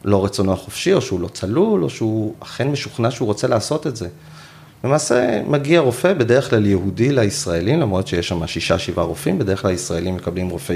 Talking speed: 185 wpm